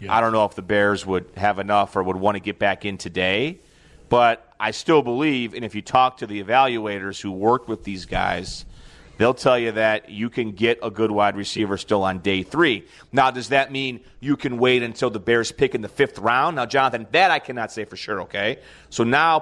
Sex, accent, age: male, American, 30-49